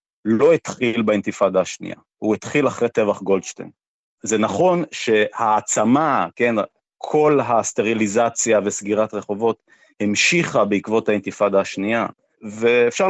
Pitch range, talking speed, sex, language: 110-145 Hz, 100 wpm, male, Hebrew